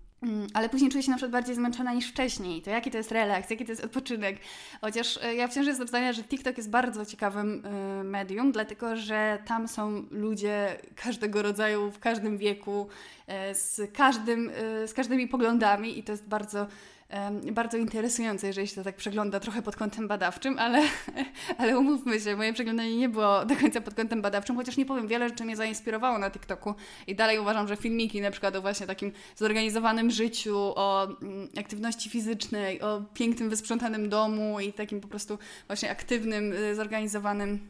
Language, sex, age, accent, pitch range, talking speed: Polish, female, 20-39, native, 205-240 Hz, 175 wpm